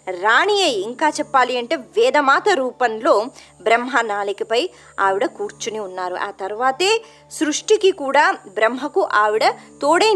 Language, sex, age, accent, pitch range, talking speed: Telugu, male, 20-39, native, 225-345 Hz, 105 wpm